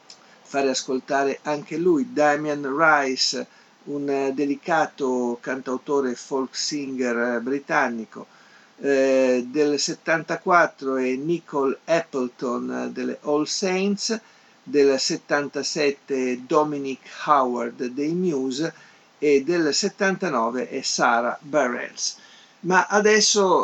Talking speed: 90 wpm